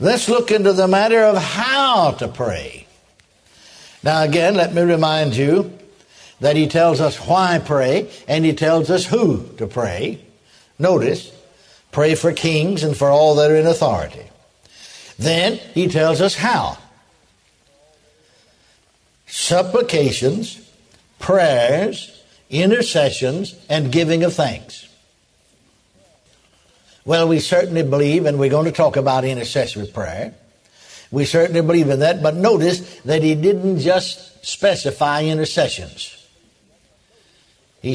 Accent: American